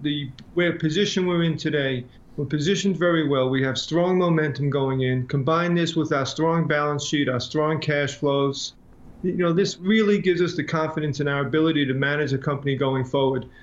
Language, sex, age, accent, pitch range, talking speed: English, male, 40-59, American, 140-170 Hz, 195 wpm